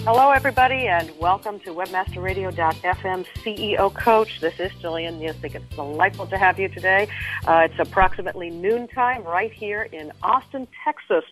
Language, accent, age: English, American, 50-69